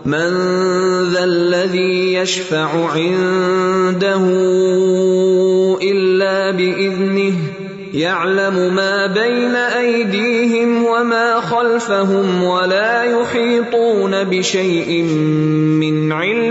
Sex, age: male, 20-39